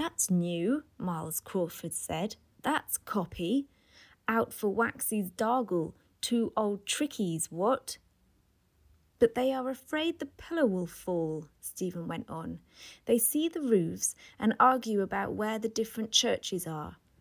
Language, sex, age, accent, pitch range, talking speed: English, female, 30-49, British, 170-245 Hz, 135 wpm